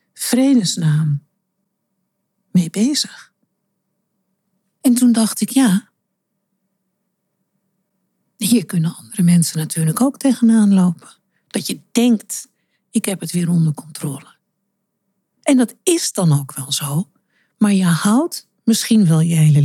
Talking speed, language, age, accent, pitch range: 120 wpm, Dutch, 60-79, Dutch, 175-215 Hz